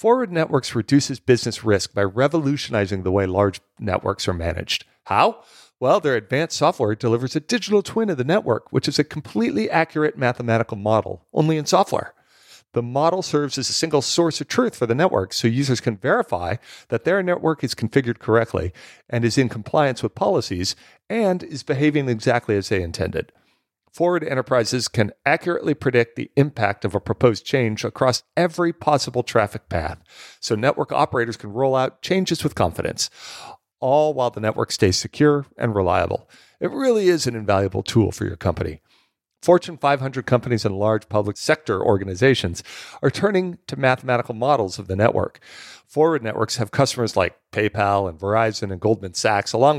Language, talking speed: English, 170 wpm